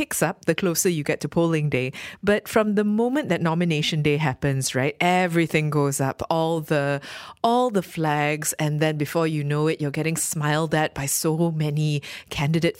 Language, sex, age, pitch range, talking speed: English, female, 20-39, 150-190 Hz, 185 wpm